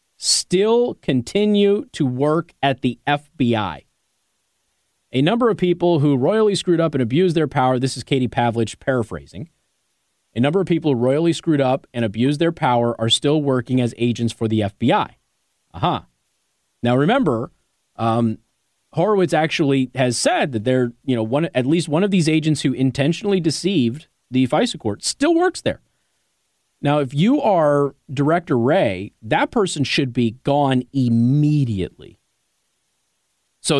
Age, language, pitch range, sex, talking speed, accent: 30-49, English, 120-155 Hz, male, 150 wpm, American